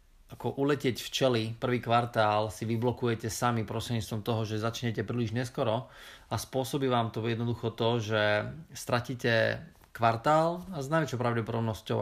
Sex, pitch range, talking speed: male, 110-130 Hz, 140 wpm